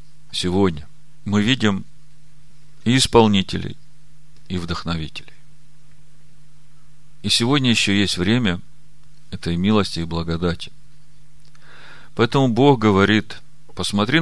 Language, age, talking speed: Russian, 40-59, 85 wpm